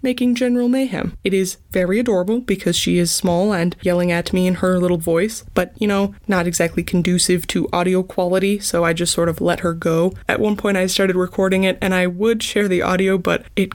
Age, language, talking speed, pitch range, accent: 20-39, English, 225 wpm, 175-200 Hz, American